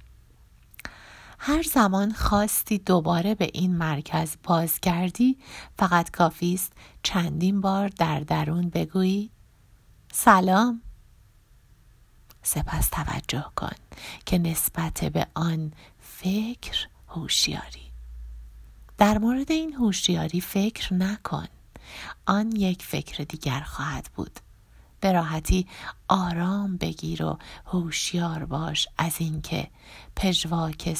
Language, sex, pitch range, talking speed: Persian, female, 150-185 Hz, 95 wpm